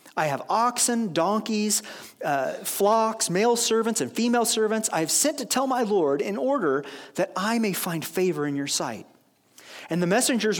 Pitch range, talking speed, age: 155-230 Hz, 170 wpm, 40-59